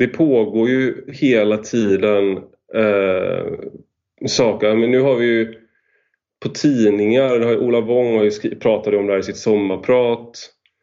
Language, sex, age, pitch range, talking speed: English, male, 30-49, 100-125 Hz, 140 wpm